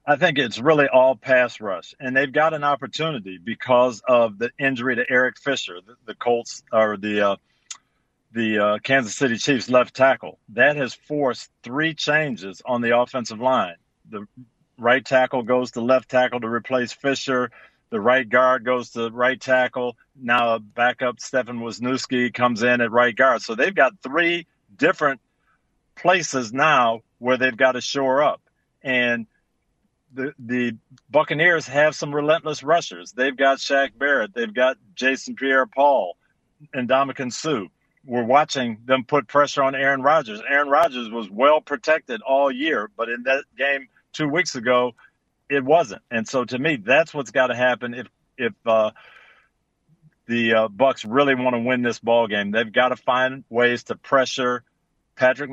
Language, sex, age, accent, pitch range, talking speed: English, male, 50-69, American, 120-140 Hz, 165 wpm